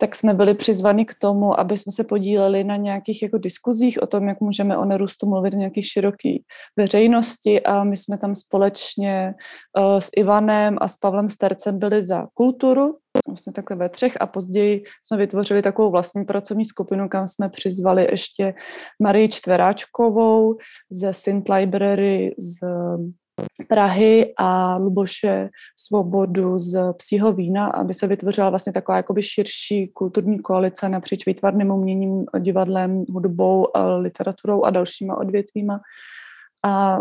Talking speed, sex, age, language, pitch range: 140 wpm, female, 20-39, Czech, 195-210 Hz